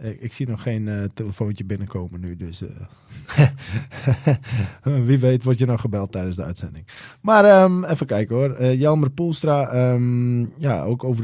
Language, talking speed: English, 170 wpm